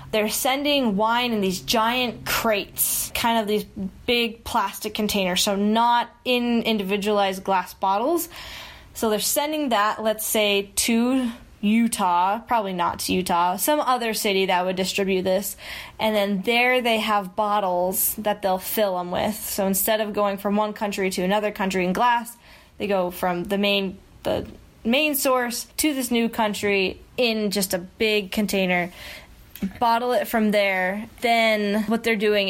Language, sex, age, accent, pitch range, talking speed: English, female, 10-29, American, 200-240 Hz, 160 wpm